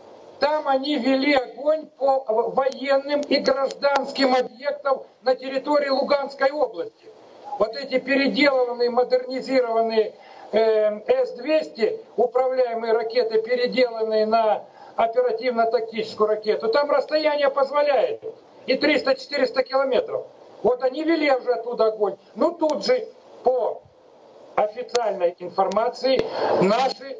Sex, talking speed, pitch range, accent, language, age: male, 95 wpm, 225-295 Hz, native, Russian, 50-69